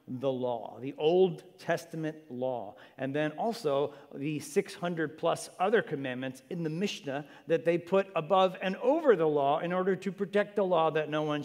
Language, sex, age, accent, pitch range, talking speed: English, male, 40-59, American, 145-180 Hz, 175 wpm